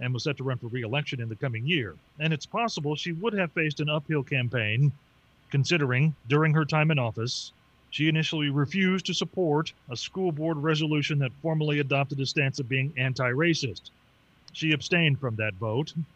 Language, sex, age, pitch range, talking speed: English, male, 40-59, 125-160 Hz, 180 wpm